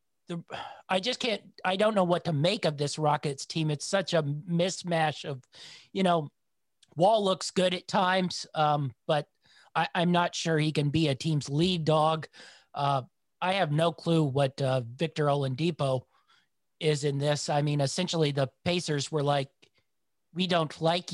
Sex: male